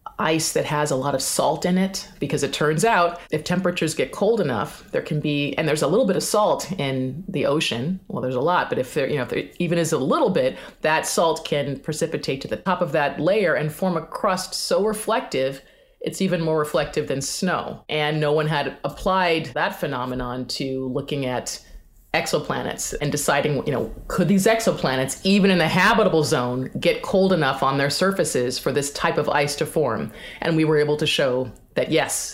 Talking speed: 210 wpm